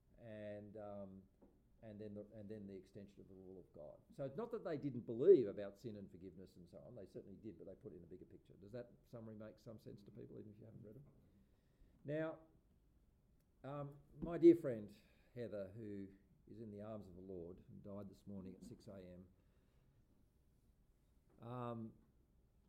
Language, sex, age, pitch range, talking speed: English, male, 50-69, 90-110 Hz, 195 wpm